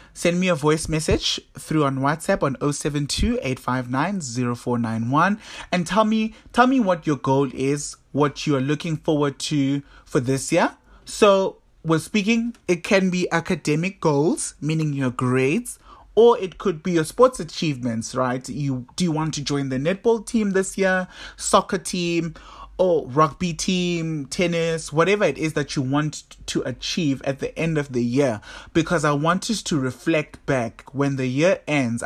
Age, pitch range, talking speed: 30-49, 130-180 Hz, 170 wpm